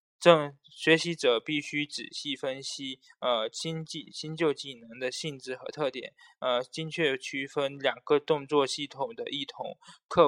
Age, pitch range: 20-39, 135-180 Hz